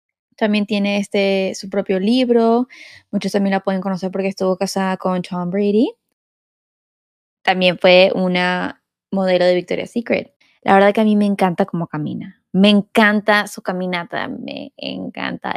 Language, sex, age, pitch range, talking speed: Spanish, female, 10-29, 180-200 Hz, 150 wpm